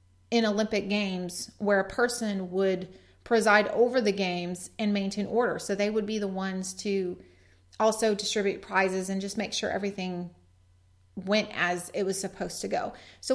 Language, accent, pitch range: English, American, 180-220 Hz